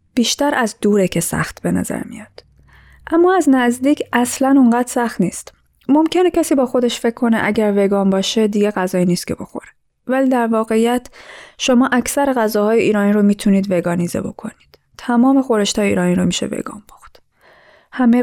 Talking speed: 160 wpm